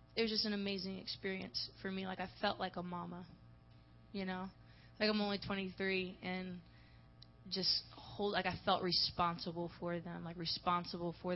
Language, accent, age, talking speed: English, American, 20-39, 170 wpm